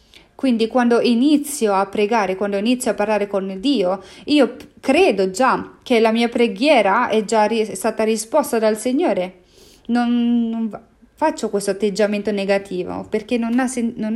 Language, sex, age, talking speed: English, female, 30-49, 140 wpm